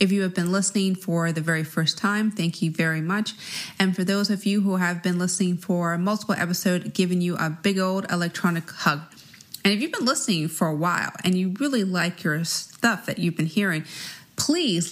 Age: 30-49